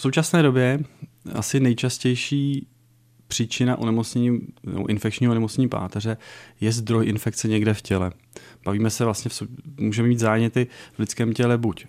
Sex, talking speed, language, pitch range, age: male, 135 wpm, Czech, 100-120 Hz, 30-49